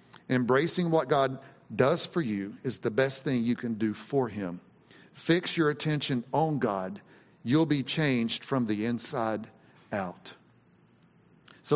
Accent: American